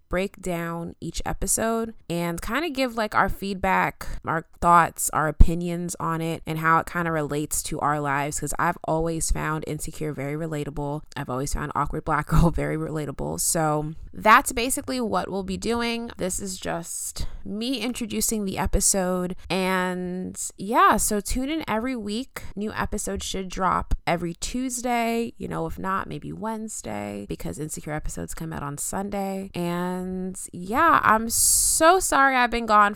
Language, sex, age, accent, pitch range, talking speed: English, female, 20-39, American, 155-220 Hz, 165 wpm